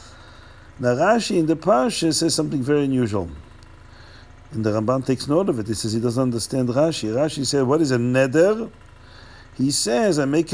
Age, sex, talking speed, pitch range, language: 50-69, male, 180 wpm, 100-155 Hz, English